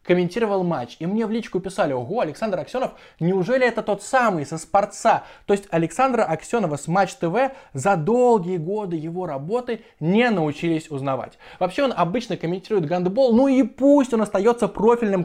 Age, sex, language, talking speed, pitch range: 20-39, male, Russian, 165 wpm, 165-235 Hz